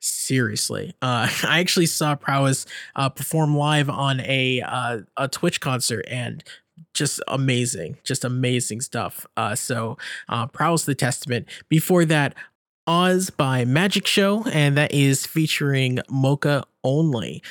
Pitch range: 135-180 Hz